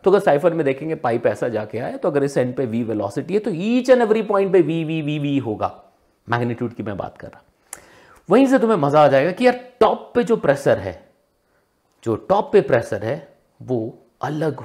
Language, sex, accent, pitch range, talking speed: Hindi, male, native, 130-205 Hz, 185 wpm